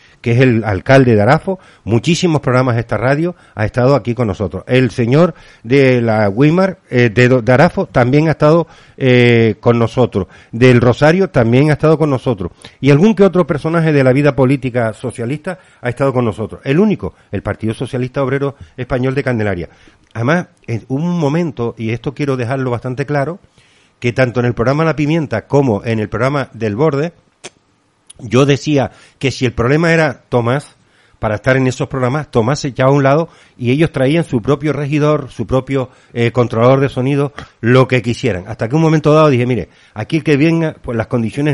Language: Spanish